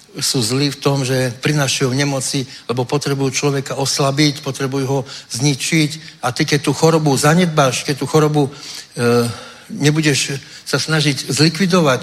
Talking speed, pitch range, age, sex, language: 145 wpm, 135-160 Hz, 60-79, male, Czech